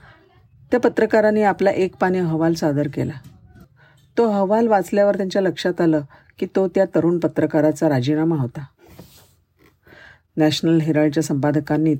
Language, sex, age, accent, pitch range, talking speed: Marathi, female, 50-69, native, 145-180 Hz, 120 wpm